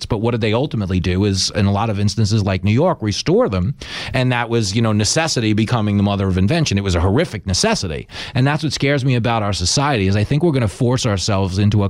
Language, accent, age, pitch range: English, American, 30-49, 95-125 Hz